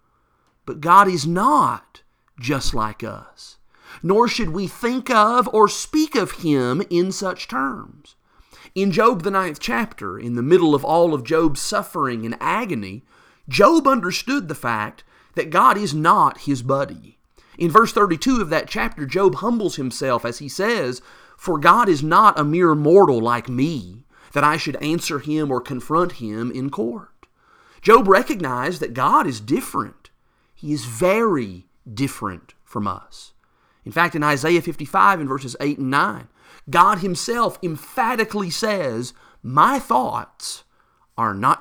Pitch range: 130-195 Hz